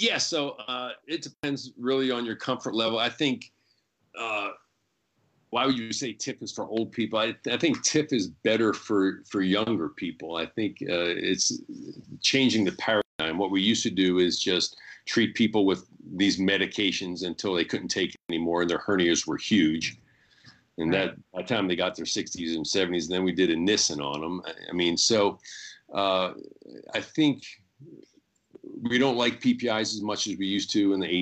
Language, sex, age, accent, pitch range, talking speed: English, male, 40-59, American, 90-115 Hz, 190 wpm